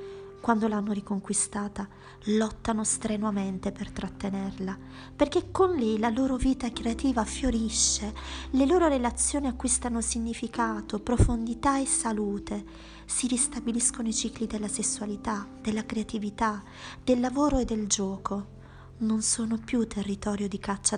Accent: native